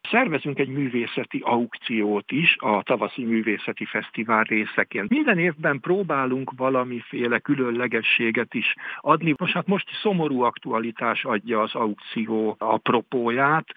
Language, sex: Hungarian, male